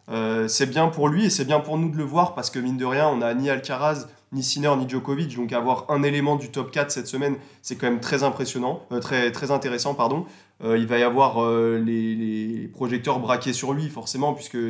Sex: male